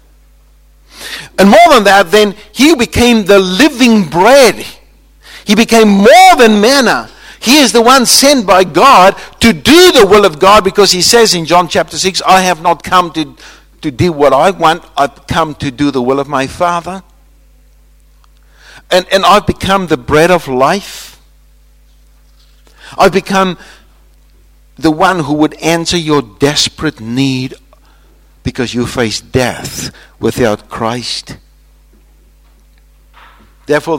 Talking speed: 140 wpm